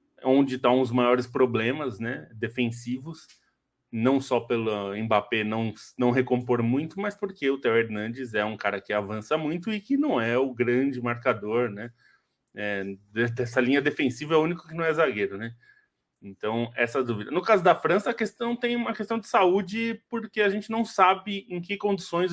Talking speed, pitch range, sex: 185 wpm, 120-165 Hz, male